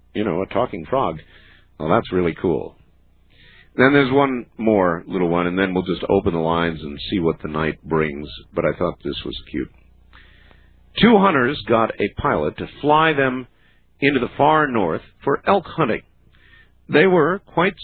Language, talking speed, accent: English, 175 wpm, American